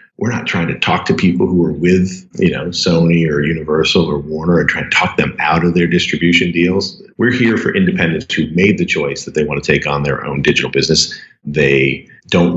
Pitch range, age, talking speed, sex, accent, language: 75-90 Hz, 50-69, 225 wpm, male, American, English